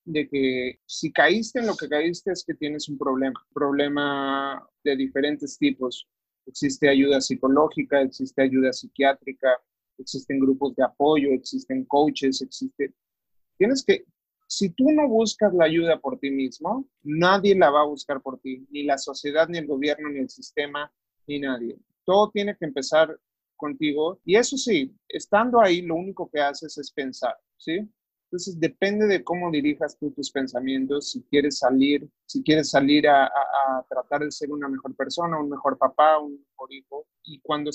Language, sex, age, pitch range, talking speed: Spanish, male, 30-49, 135-175 Hz, 170 wpm